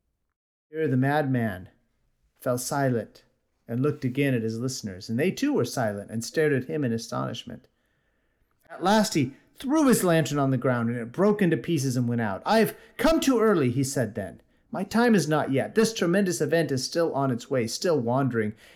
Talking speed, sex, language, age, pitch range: 200 wpm, male, English, 40-59, 115-155 Hz